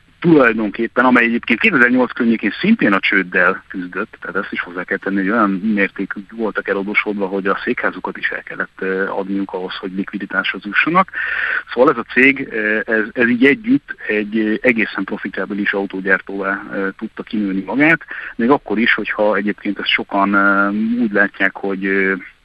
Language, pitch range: Hungarian, 100-115 Hz